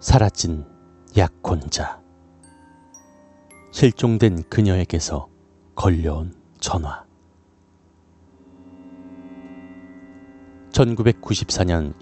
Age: 40-59